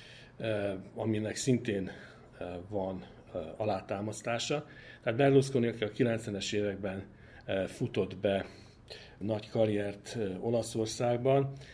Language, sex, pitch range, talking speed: Hungarian, male, 105-125 Hz, 70 wpm